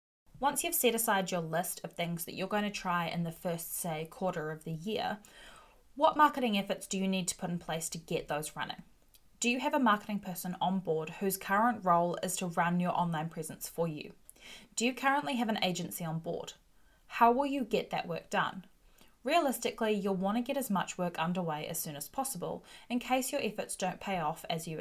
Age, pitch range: 10-29, 175-230 Hz